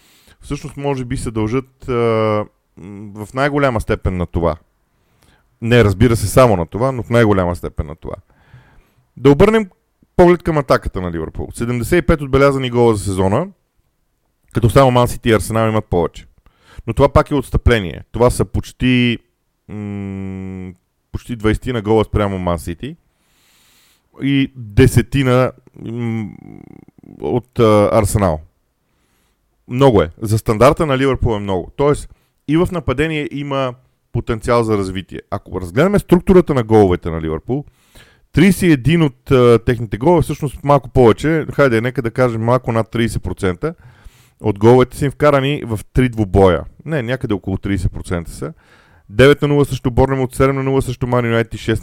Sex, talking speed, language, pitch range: male, 150 wpm, Bulgarian, 100-135 Hz